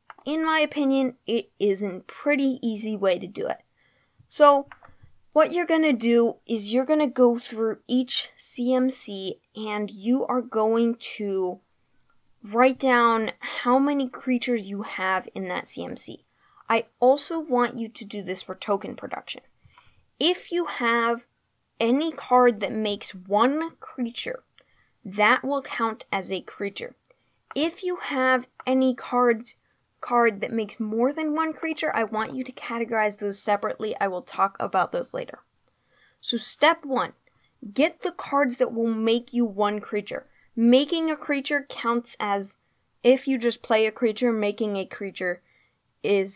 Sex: female